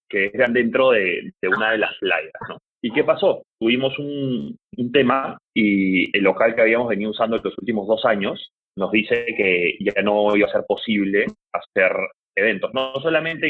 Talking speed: 180 wpm